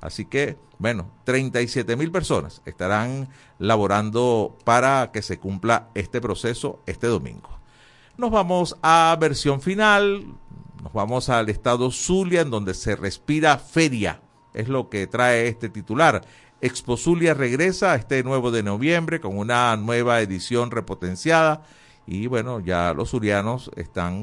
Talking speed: 135 wpm